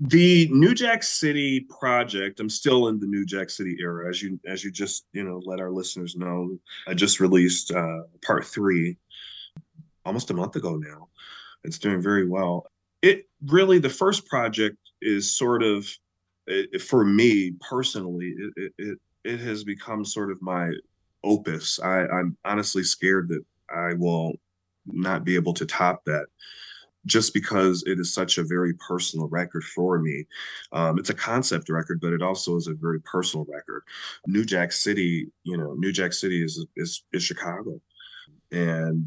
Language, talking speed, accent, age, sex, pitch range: English, 170 wpm, American, 30-49, male, 85-100 Hz